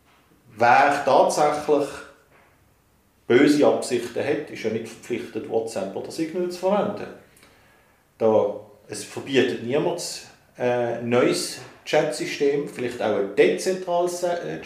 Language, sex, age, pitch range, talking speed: German, male, 50-69, 125-170 Hz, 100 wpm